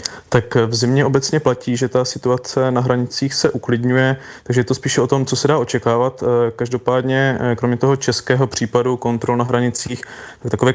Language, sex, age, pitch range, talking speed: Czech, male, 20-39, 120-130 Hz, 180 wpm